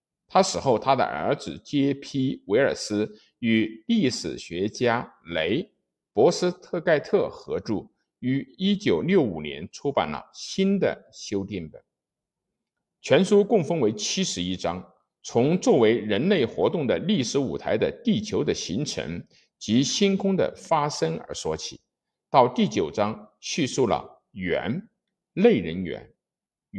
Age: 50-69